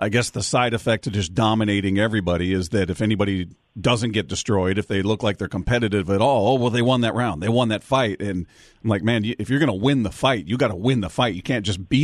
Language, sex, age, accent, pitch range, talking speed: English, male, 40-59, American, 105-125 Hz, 275 wpm